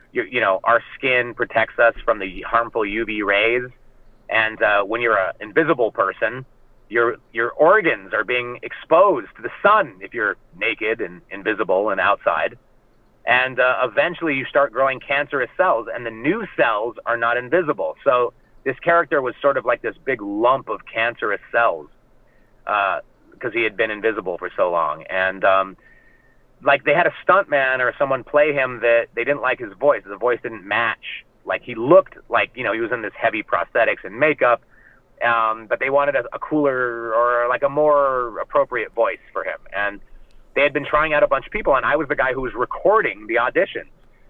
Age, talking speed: 30-49, 190 wpm